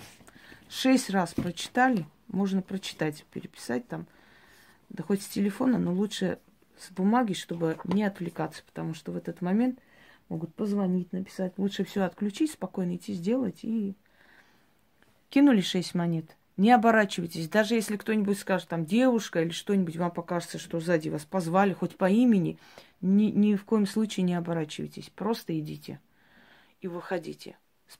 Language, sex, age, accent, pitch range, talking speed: Russian, female, 30-49, native, 170-210 Hz, 145 wpm